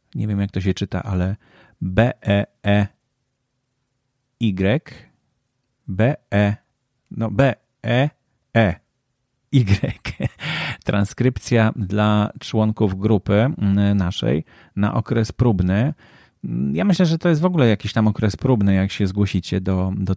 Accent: native